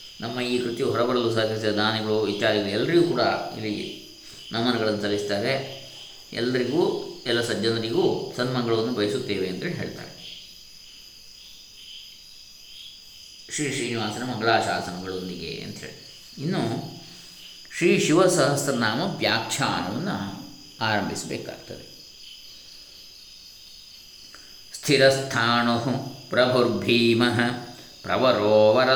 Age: 20-39